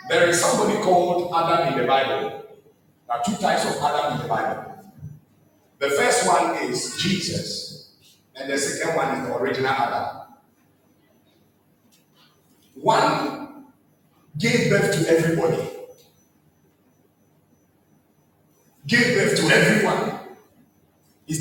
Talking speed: 110 wpm